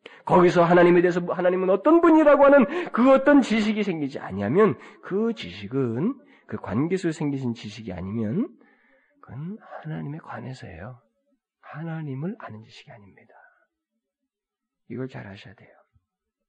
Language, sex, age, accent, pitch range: Korean, male, 40-59, native, 145-225 Hz